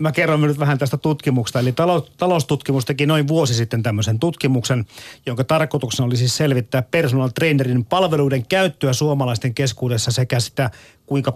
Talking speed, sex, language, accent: 150 wpm, male, Finnish, native